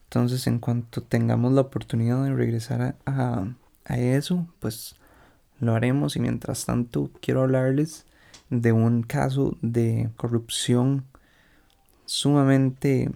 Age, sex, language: 30-49, male, Spanish